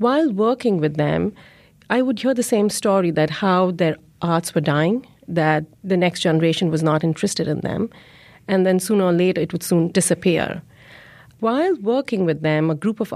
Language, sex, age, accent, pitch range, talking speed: English, female, 40-59, Indian, 160-195 Hz, 185 wpm